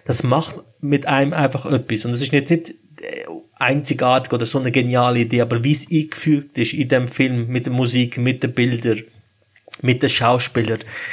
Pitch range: 115-135 Hz